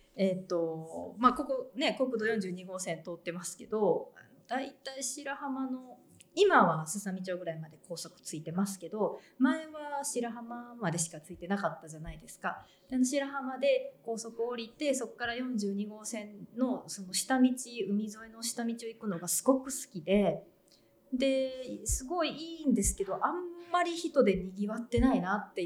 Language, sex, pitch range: Japanese, female, 180-255 Hz